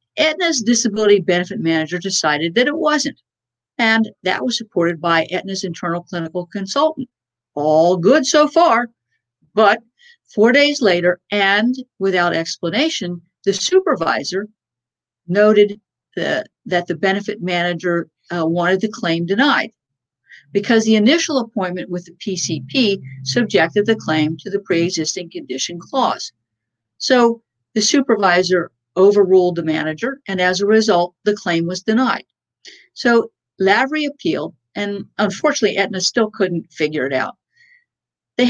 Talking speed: 125 wpm